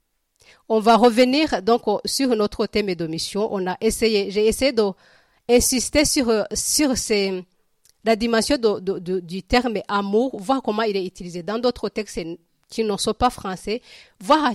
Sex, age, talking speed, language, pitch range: female, 40-59, 170 wpm, French, 195-245 Hz